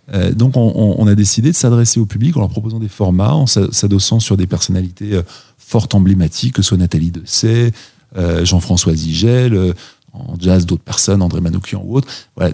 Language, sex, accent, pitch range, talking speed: French, male, French, 95-120 Hz, 175 wpm